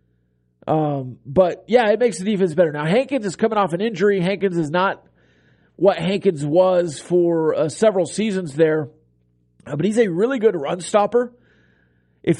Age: 40-59